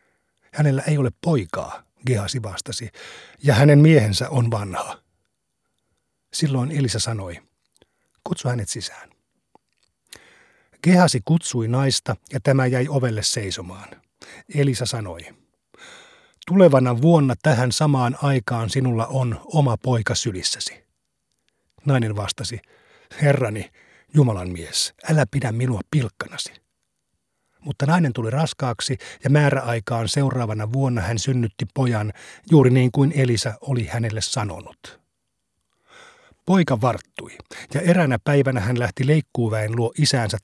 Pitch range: 115-140 Hz